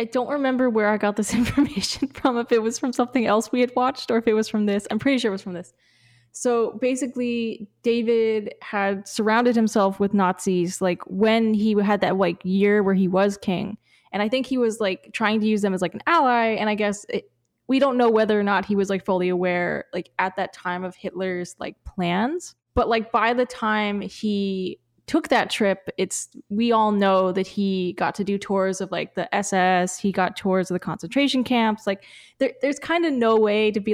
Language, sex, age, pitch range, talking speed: English, female, 10-29, 195-235 Hz, 220 wpm